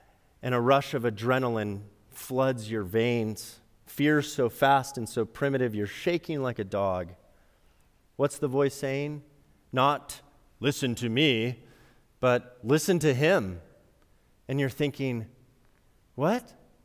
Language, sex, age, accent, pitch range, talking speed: English, male, 30-49, American, 110-150 Hz, 125 wpm